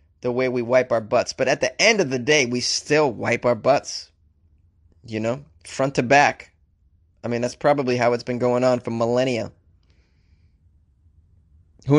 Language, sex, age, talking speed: English, male, 20-39, 175 wpm